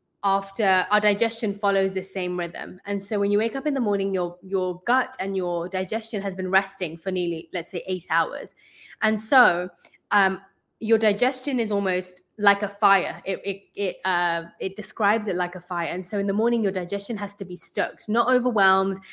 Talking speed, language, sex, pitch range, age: 200 wpm, English, female, 185-220 Hz, 20-39